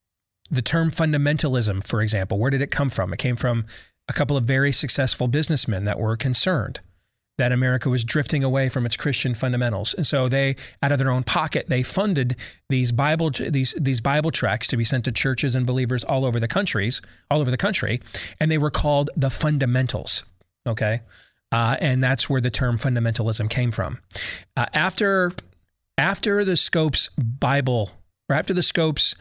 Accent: American